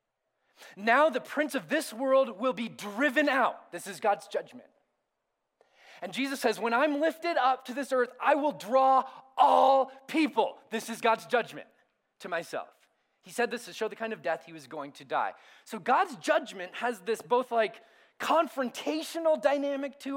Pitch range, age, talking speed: 175-270 Hz, 30-49, 175 wpm